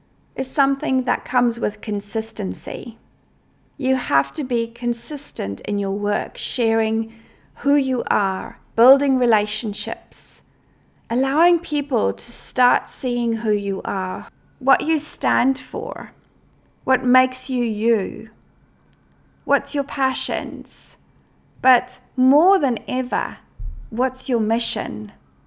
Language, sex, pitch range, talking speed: English, female, 225-270 Hz, 110 wpm